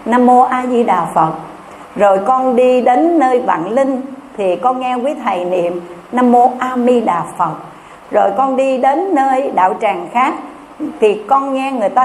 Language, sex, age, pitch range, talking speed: Vietnamese, female, 60-79, 205-265 Hz, 190 wpm